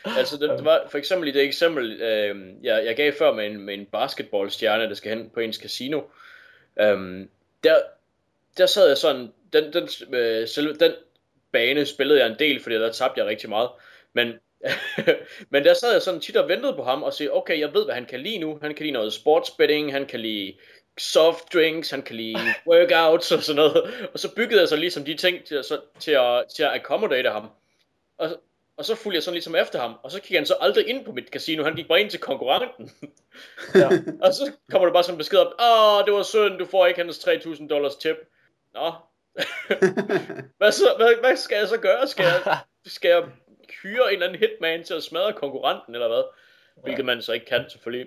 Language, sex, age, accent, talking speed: Danish, male, 20-39, native, 225 wpm